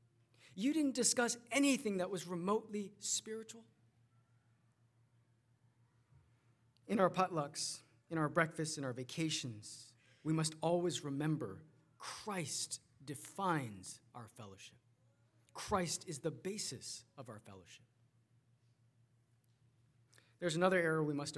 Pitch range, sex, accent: 120-190 Hz, male, American